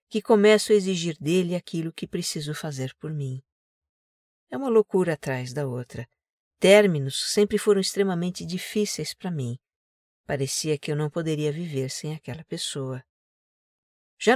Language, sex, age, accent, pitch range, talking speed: Portuguese, female, 50-69, Brazilian, 140-200 Hz, 140 wpm